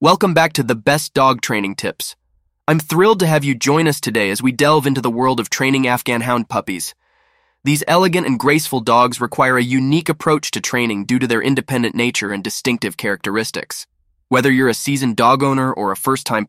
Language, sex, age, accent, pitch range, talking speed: English, male, 20-39, American, 90-140 Hz, 200 wpm